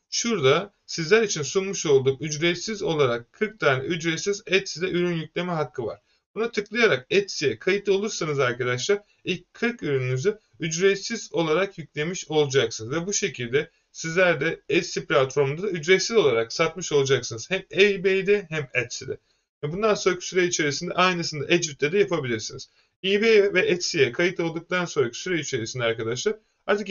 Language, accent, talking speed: Turkish, native, 135 wpm